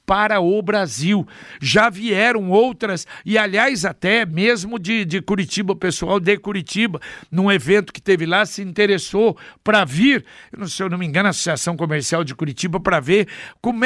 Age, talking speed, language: 60-79, 170 wpm, Portuguese